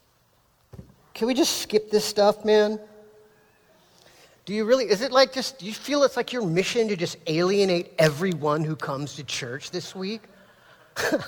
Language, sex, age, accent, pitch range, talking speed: English, male, 40-59, American, 140-210 Hz, 165 wpm